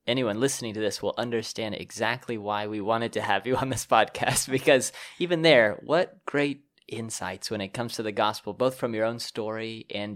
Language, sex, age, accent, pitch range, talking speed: English, male, 20-39, American, 105-135 Hz, 200 wpm